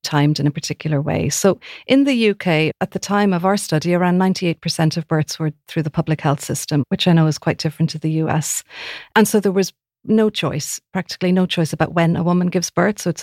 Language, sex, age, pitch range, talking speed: English, female, 40-59, 160-185 Hz, 230 wpm